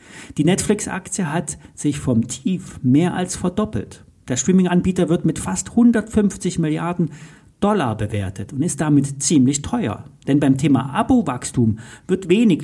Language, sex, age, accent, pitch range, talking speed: German, male, 40-59, German, 135-190 Hz, 140 wpm